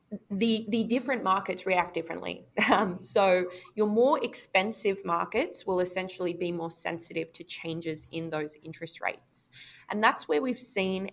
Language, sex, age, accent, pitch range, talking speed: English, female, 20-39, Australian, 170-205 Hz, 150 wpm